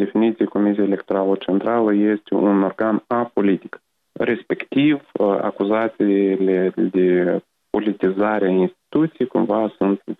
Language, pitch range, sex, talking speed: Romanian, 95-110 Hz, male, 95 wpm